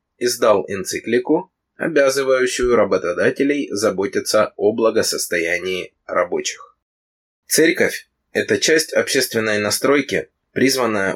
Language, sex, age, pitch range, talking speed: Russian, male, 20-39, 90-140 Hz, 80 wpm